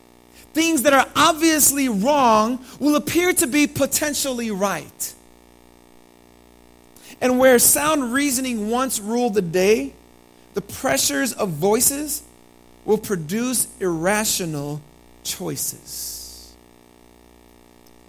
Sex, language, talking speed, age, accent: male, English, 95 wpm, 40-59, American